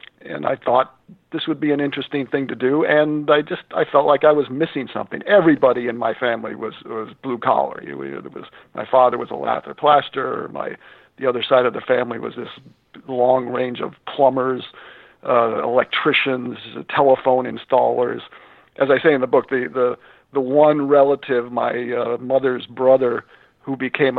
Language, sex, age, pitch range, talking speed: English, male, 50-69, 125-145 Hz, 175 wpm